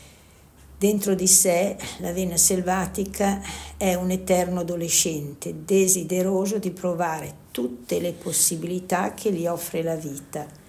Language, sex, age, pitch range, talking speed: Italian, female, 60-79, 155-190 Hz, 120 wpm